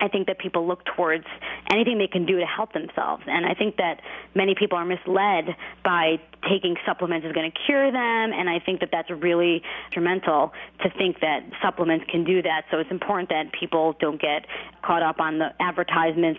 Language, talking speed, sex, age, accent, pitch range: English, 200 wpm, female, 30-49, American, 165-185 Hz